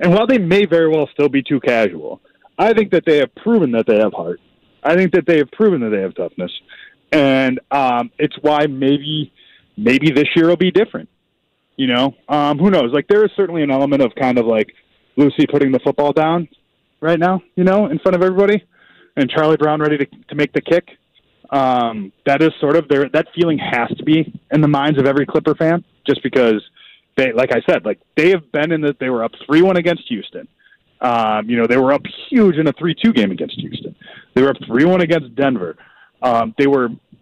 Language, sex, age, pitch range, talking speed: English, male, 20-39, 135-180 Hz, 220 wpm